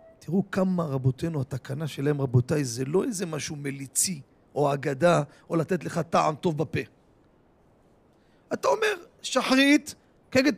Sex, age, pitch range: male, 40-59, 170-275 Hz